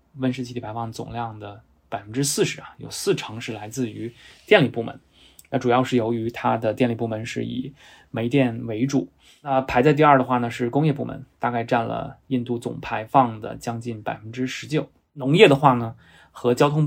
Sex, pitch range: male, 115-135 Hz